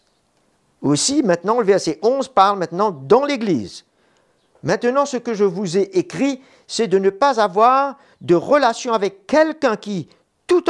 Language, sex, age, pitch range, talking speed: French, male, 50-69, 150-220 Hz, 150 wpm